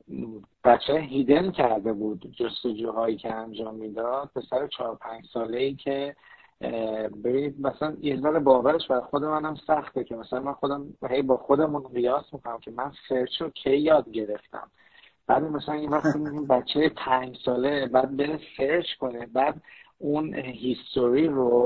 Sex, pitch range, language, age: male, 120-145 Hz, Persian, 50-69